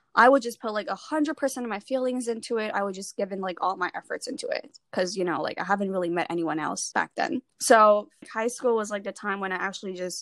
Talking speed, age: 265 wpm, 10-29